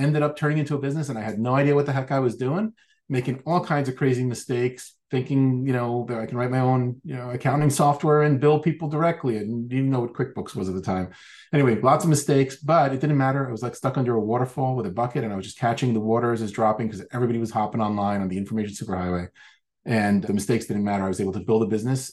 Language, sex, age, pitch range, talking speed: English, male, 30-49, 110-135 Hz, 265 wpm